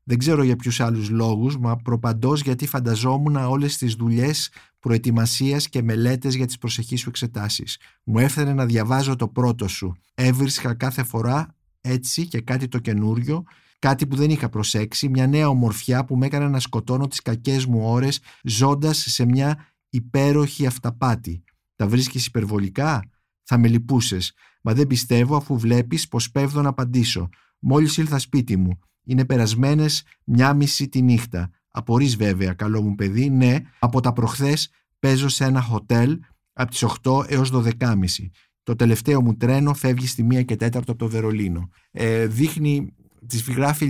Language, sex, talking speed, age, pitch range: Greek, male, 160 wpm, 50-69, 115-140 Hz